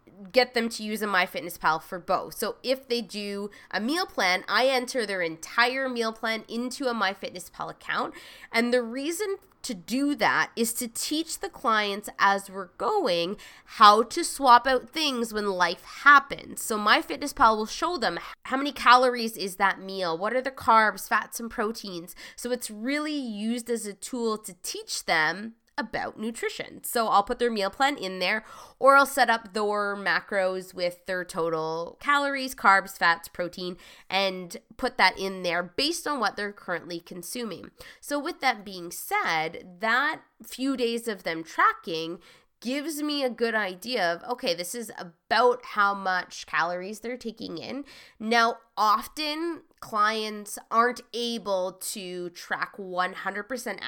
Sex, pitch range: female, 190-260 Hz